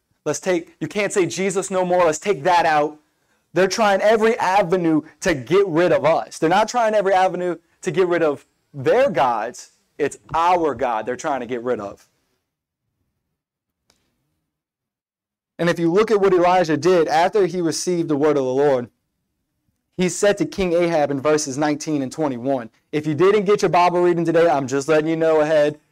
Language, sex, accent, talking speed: English, male, American, 190 wpm